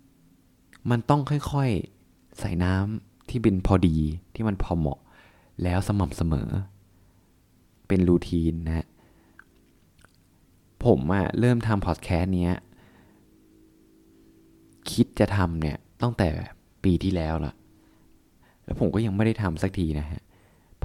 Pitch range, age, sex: 85-105 Hz, 20-39, male